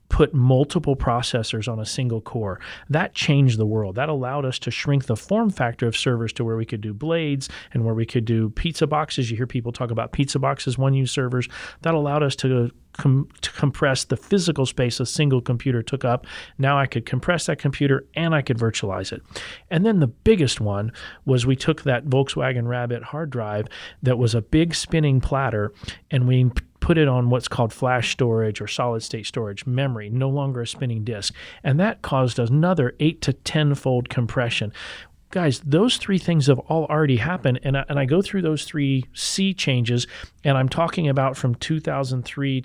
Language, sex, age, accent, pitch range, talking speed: English, male, 40-59, American, 120-150 Hz, 195 wpm